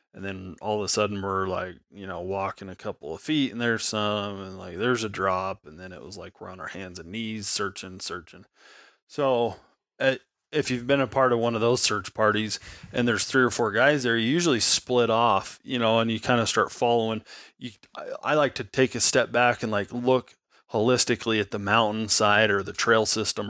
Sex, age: male, 30-49